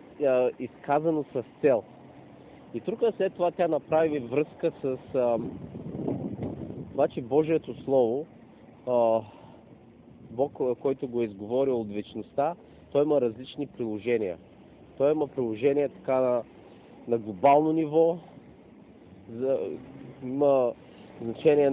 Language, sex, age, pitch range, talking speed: Bulgarian, male, 40-59, 115-150 Hz, 100 wpm